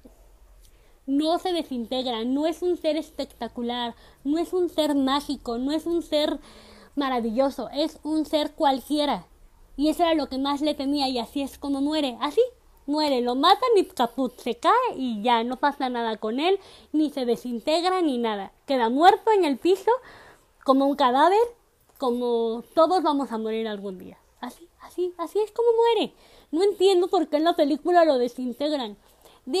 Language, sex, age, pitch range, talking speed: Spanish, female, 20-39, 235-320 Hz, 170 wpm